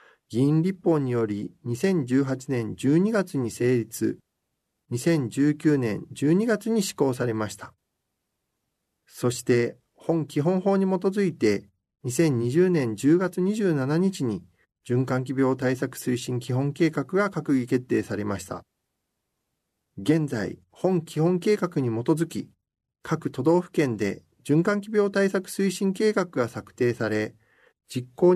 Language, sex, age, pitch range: Japanese, male, 50-69, 120-180 Hz